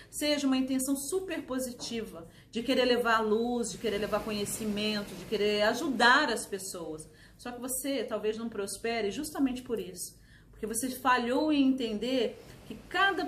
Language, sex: Portuguese, female